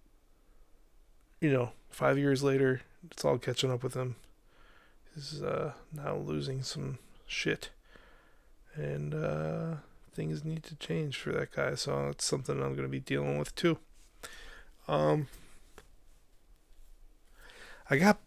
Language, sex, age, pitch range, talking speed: English, male, 20-39, 115-140 Hz, 130 wpm